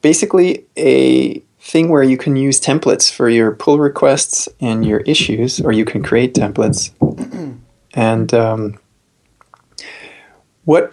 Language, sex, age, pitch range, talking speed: English, male, 30-49, 110-135 Hz, 125 wpm